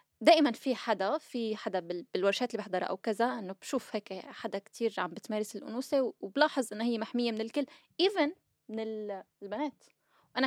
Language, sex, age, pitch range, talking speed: Arabic, female, 10-29, 195-245 Hz, 160 wpm